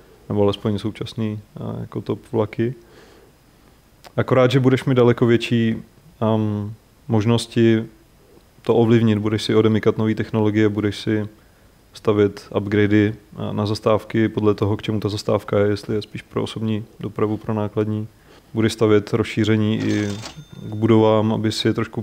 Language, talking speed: Czech, 140 wpm